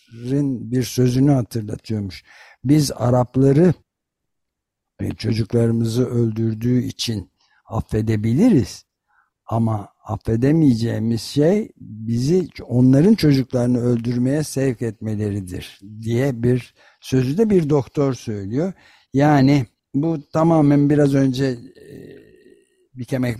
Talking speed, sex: 80 wpm, male